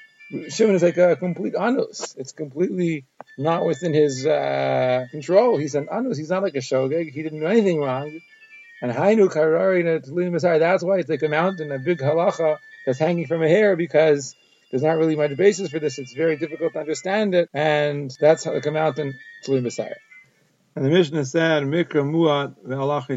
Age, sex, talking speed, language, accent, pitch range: 40-59, male, 175 wpm, English, American, 135-170 Hz